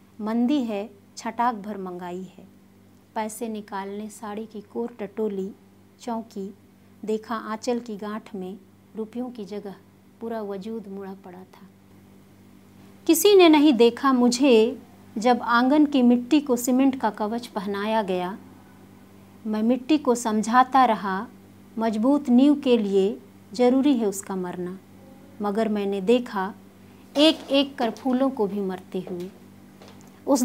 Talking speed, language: 130 wpm, Hindi